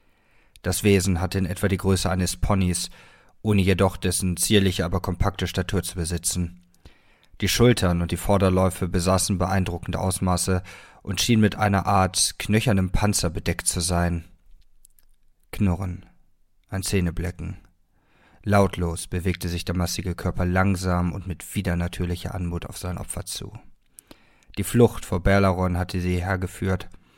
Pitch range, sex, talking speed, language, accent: 90-100 Hz, male, 135 wpm, German, German